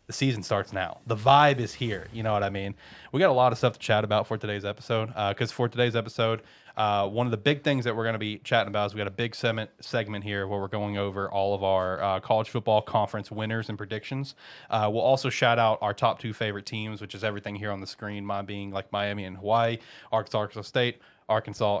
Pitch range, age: 100-120 Hz, 20-39